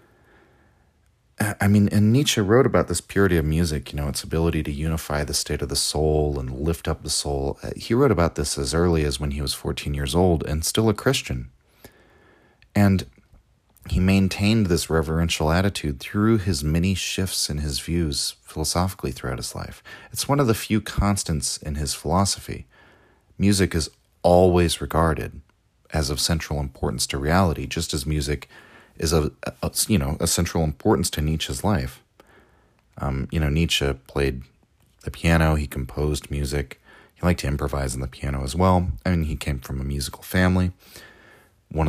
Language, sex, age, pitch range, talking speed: English, male, 40-59, 70-95 Hz, 175 wpm